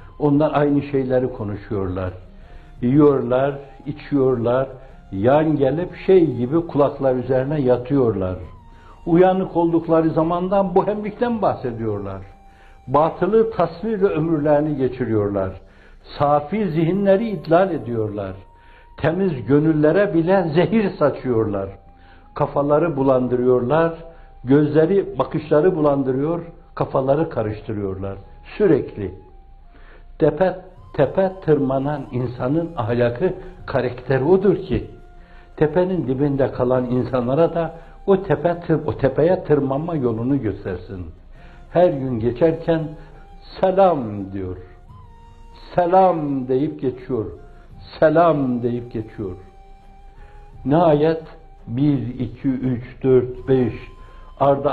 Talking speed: 85 wpm